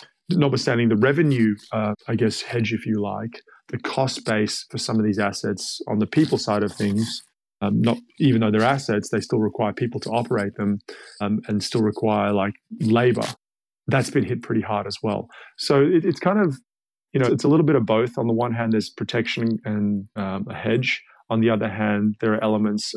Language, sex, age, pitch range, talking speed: English, male, 30-49, 105-120 Hz, 210 wpm